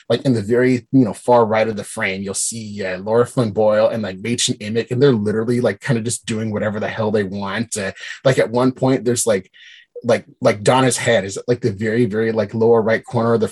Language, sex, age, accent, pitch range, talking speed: English, male, 30-49, American, 110-130 Hz, 255 wpm